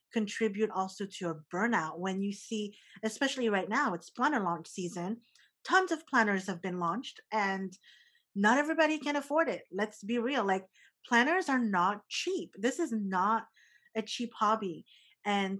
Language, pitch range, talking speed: English, 195-235 Hz, 160 wpm